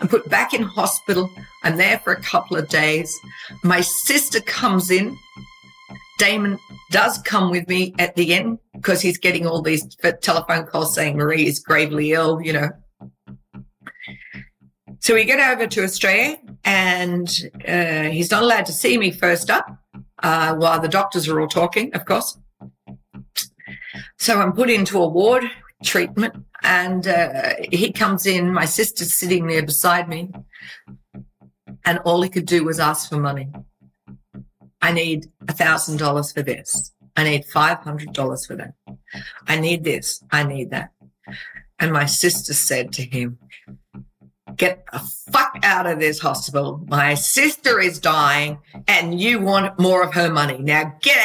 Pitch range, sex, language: 145-190 Hz, female, English